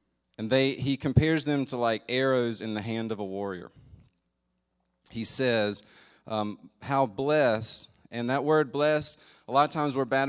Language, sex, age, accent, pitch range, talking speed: English, male, 20-39, American, 110-135 Hz, 170 wpm